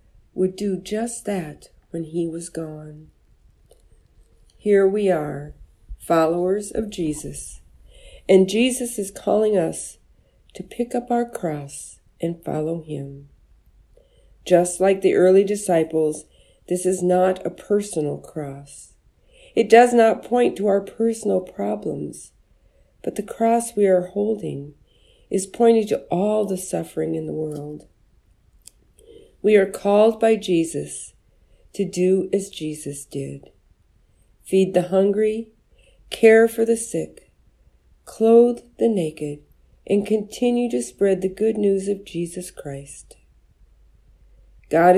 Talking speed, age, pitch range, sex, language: 125 wpm, 50-69, 155-210 Hz, female, English